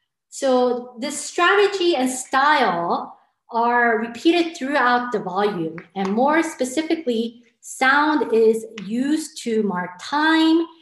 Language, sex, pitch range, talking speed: English, female, 195-255 Hz, 105 wpm